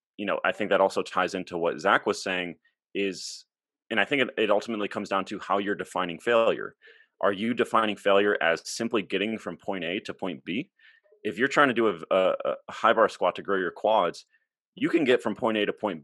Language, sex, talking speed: English, male, 230 wpm